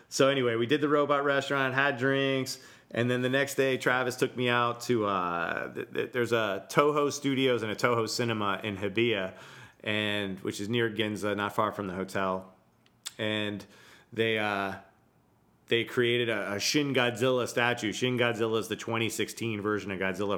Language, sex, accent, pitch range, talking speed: English, male, American, 105-125 Hz, 175 wpm